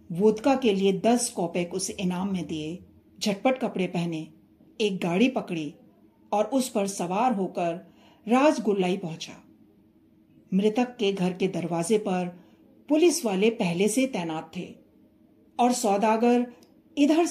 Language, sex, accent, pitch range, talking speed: Hindi, female, native, 165-235 Hz, 125 wpm